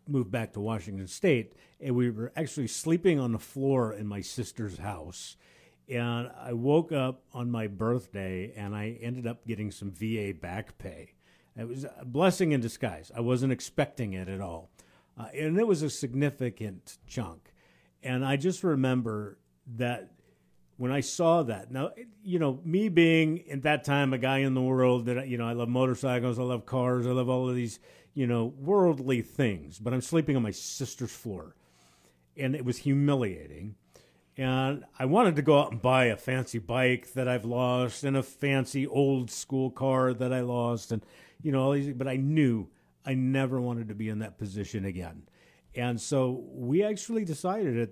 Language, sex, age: English, male, 50-69